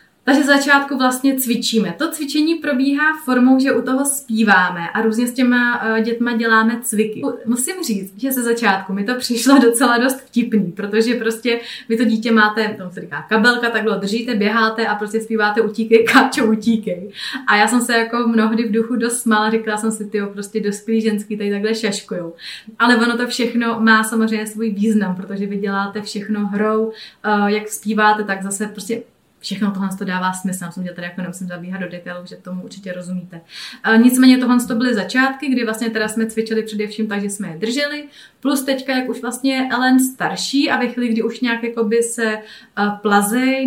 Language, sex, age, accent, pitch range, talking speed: Czech, female, 20-39, native, 210-240 Hz, 190 wpm